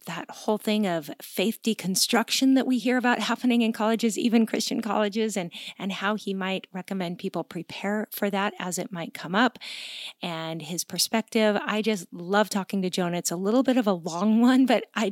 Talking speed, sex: 200 wpm, female